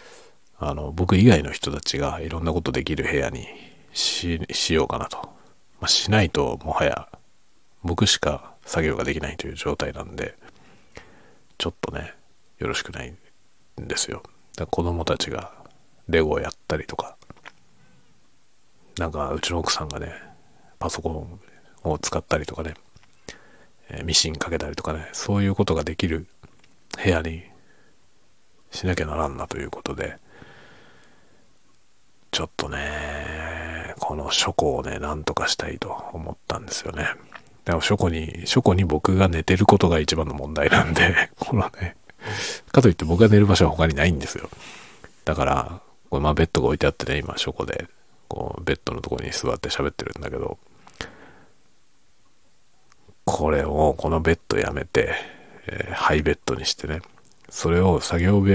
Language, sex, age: Japanese, male, 40-59